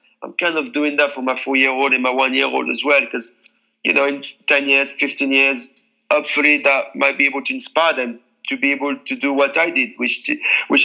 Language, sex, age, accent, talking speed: English, male, 40-59, French, 220 wpm